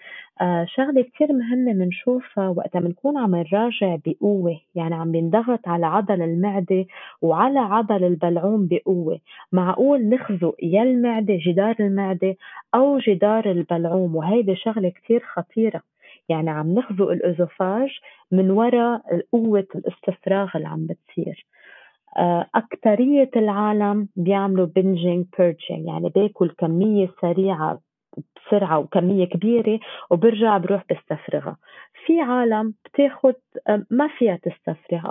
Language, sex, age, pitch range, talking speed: Arabic, female, 20-39, 180-235 Hz, 115 wpm